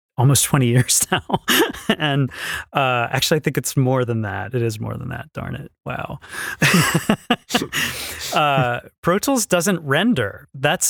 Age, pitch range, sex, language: 30-49, 115-155 Hz, male, English